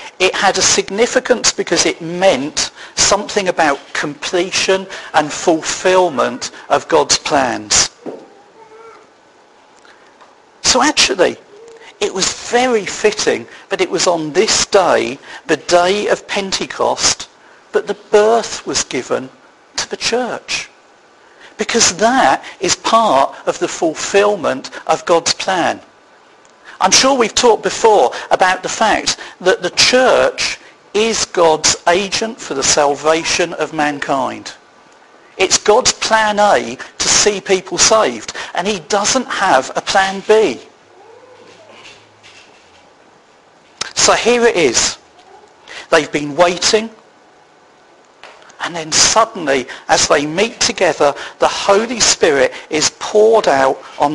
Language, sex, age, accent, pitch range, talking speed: English, male, 50-69, British, 175-265 Hz, 115 wpm